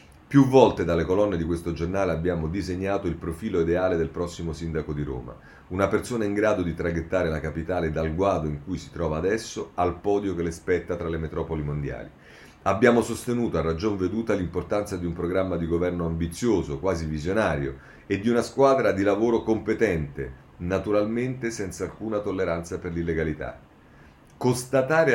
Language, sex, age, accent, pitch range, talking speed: Italian, male, 40-59, native, 80-115 Hz, 165 wpm